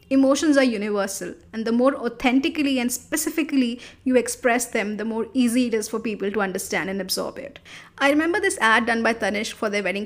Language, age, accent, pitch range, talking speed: English, 10-29, Indian, 210-260 Hz, 205 wpm